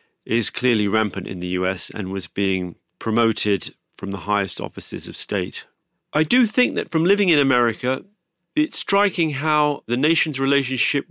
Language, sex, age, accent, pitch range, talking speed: English, male, 40-59, British, 105-150 Hz, 160 wpm